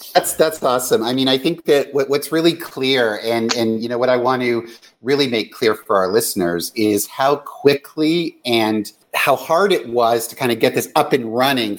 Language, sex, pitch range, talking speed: English, male, 110-140 Hz, 210 wpm